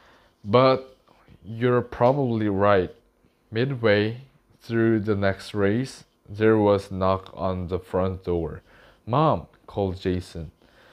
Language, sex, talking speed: English, male, 105 wpm